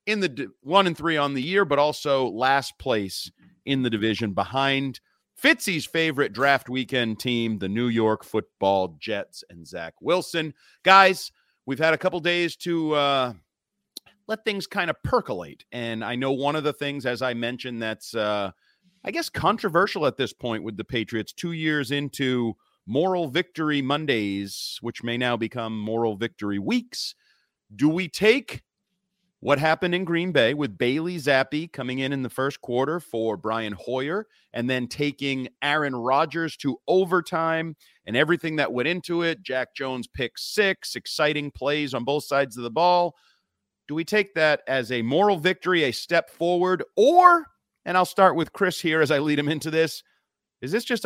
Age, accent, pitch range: 40-59, American, 120-170 Hz